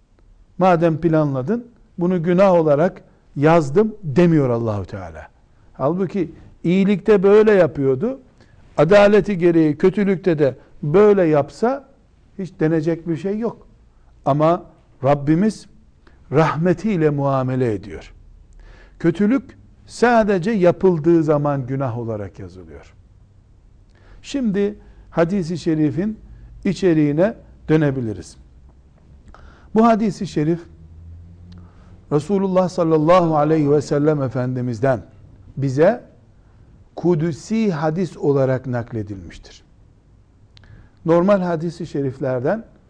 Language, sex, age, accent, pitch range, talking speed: Turkish, male, 60-79, native, 115-190 Hz, 80 wpm